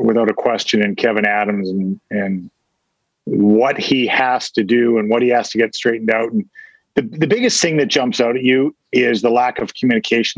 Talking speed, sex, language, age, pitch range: 210 wpm, male, English, 50-69, 120-165 Hz